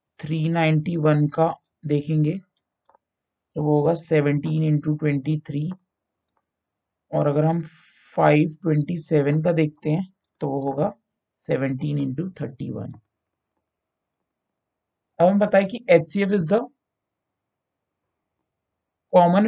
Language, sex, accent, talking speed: Hindi, male, native, 100 wpm